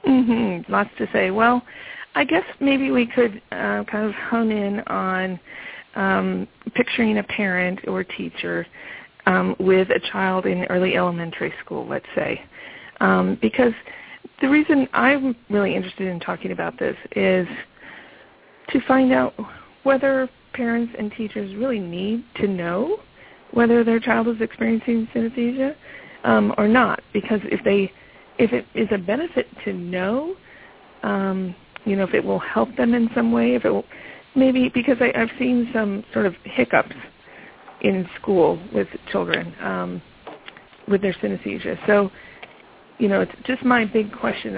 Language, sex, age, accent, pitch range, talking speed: English, female, 40-59, American, 185-240 Hz, 155 wpm